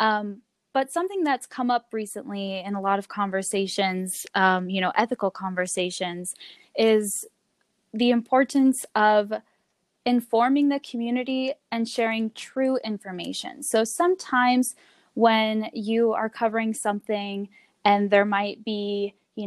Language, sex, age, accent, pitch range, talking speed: English, female, 10-29, American, 200-235 Hz, 125 wpm